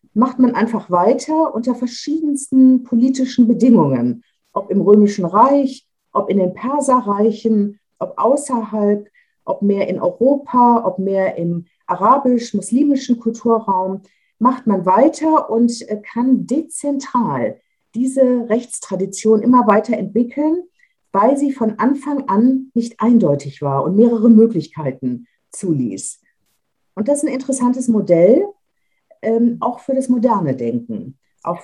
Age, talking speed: 50-69, 120 wpm